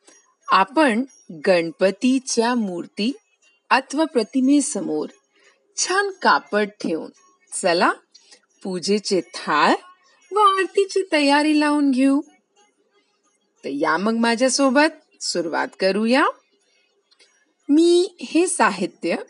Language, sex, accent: Hindi, female, native